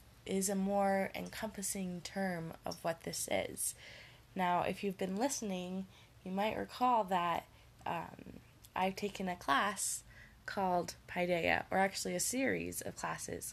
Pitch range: 170-200 Hz